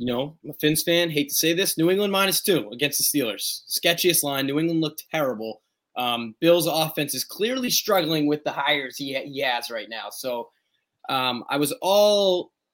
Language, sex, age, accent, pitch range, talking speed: English, male, 20-39, American, 125-170 Hz, 200 wpm